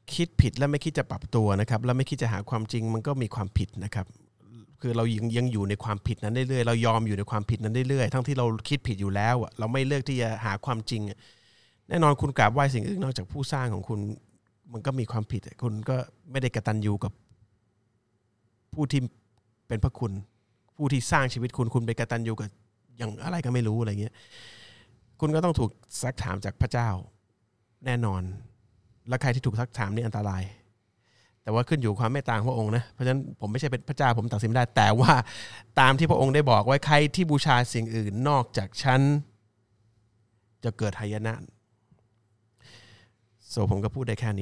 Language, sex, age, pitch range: Thai, male, 30-49, 110-130 Hz